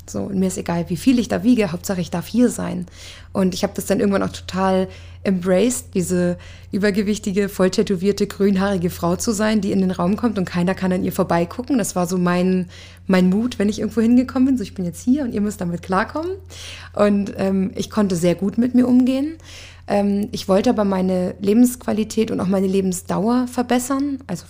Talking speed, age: 205 wpm, 20-39